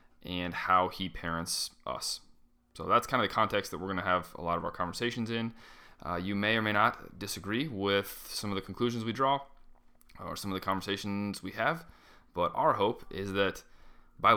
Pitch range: 95-110 Hz